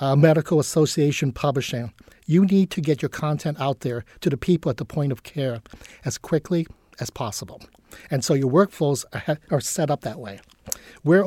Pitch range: 135-160 Hz